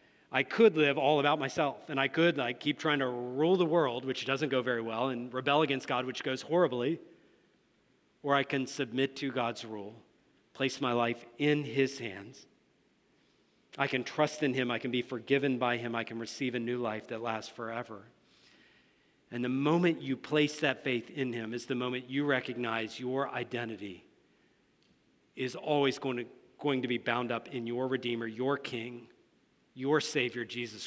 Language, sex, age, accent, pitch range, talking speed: English, male, 40-59, American, 120-145 Hz, 180 wpm